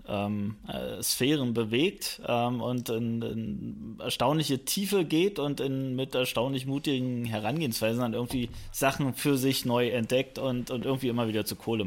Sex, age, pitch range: male, 20-39, 120-140 Hz